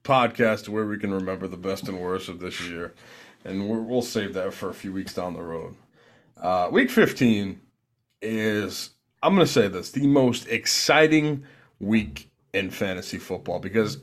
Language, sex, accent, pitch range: English, male, American, 95-125 Hz